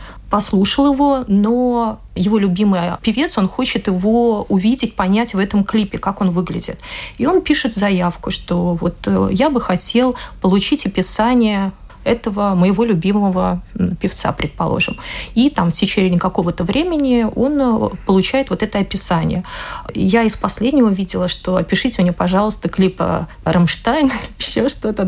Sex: female